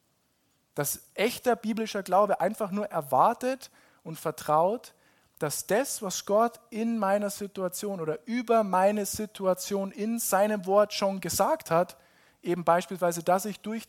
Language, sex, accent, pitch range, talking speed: German, male, German, 165-205 Hz, 135 wpm